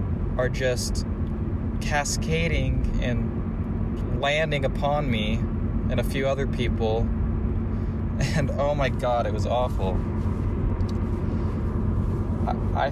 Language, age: English, 20-39